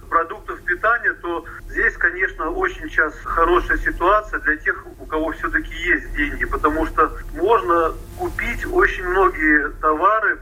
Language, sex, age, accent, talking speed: Russian, male, 40-59, native, 135 wpm